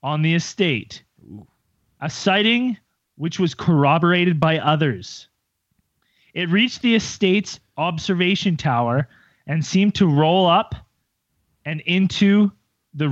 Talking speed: 110 wpm